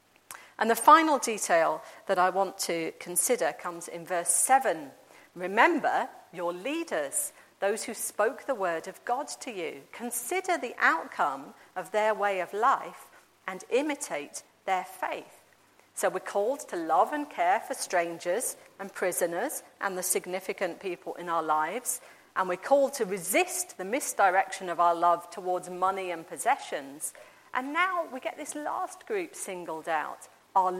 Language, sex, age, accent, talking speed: English, female, 40-59, British, 155 wpm